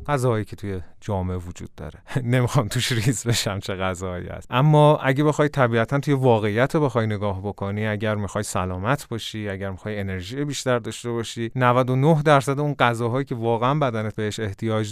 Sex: male